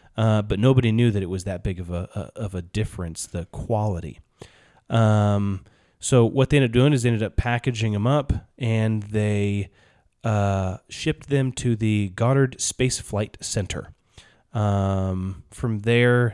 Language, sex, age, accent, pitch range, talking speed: English, male, 30-49, American, 95-120 Hz, 160 wpm